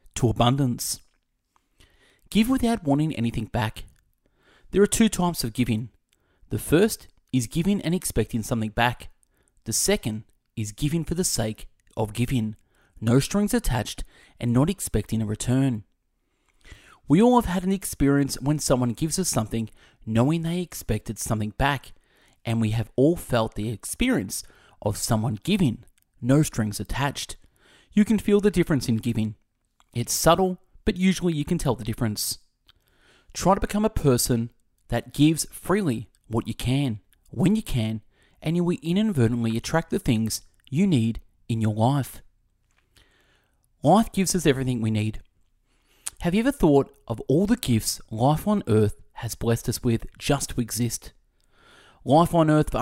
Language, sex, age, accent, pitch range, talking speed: English, male, 30-49, Australian, 110-170 Hz, 155 wpm